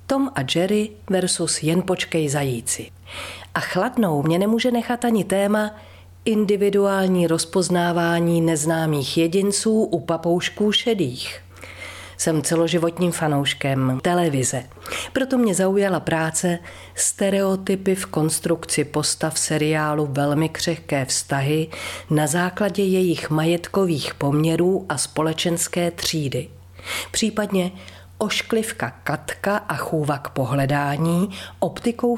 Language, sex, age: Czech, female, 40-59